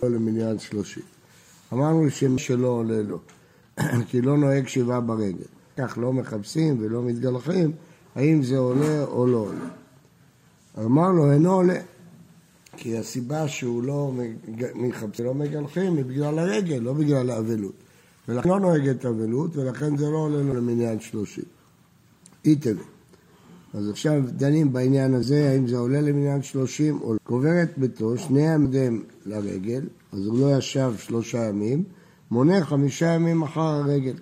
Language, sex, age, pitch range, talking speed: Hebrew, male, 60-79, 120-150 Hz, 145 wpm